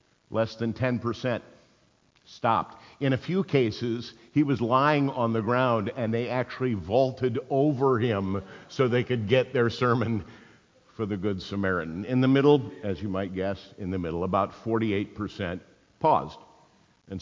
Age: 50-69